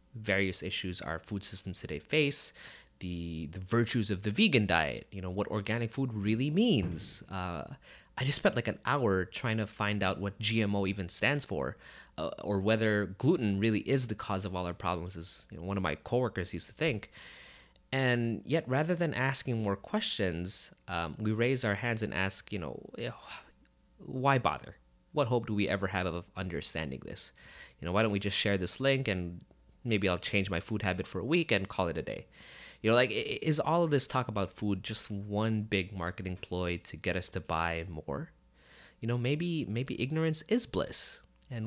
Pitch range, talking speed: 90-120 Hz, 200 wpm